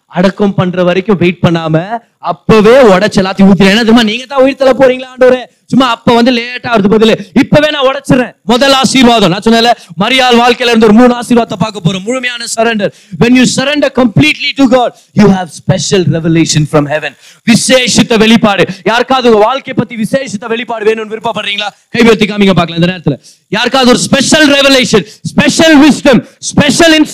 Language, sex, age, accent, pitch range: Tamil, male, 30-49, native, 160-235 Hz